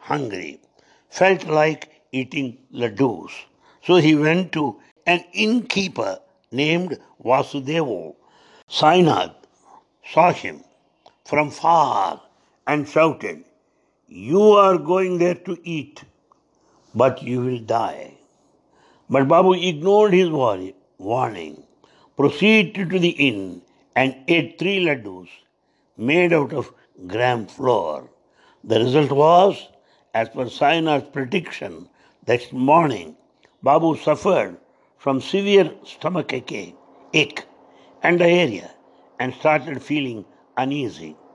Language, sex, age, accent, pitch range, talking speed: English, male, 60-79, Indian, 130-175 Hz, 100 wpm